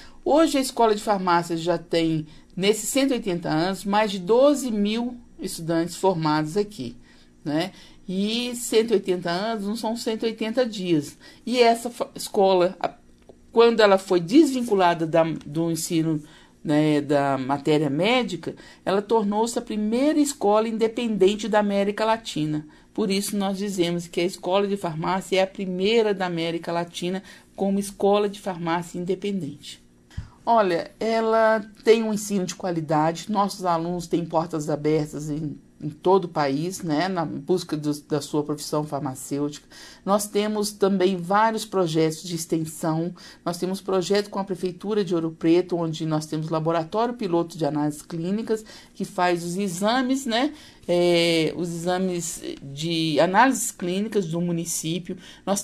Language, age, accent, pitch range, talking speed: Portuguese, 50-69, Brazilian, 160-210 Hz, 140 wpm